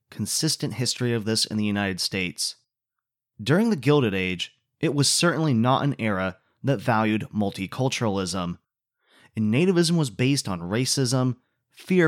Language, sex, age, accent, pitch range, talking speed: English, male, 30-49, American, 110-150 Hz, 140 wpm